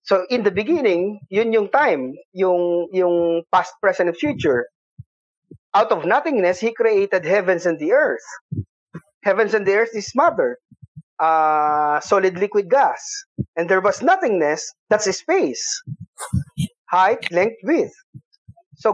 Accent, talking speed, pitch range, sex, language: native, 135 wpm, 165-225 Hz, male, Filipino